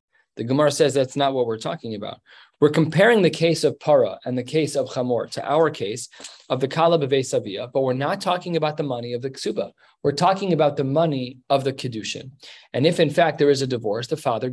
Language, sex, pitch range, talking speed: English, male, 130-165 Hz, 230 wpm